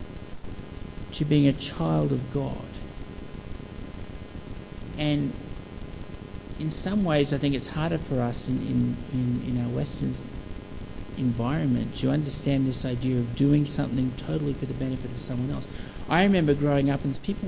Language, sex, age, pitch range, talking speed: English, male, 60-79, 125-155 Hz, 150 wpm